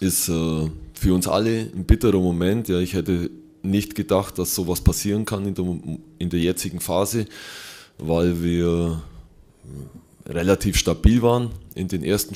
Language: German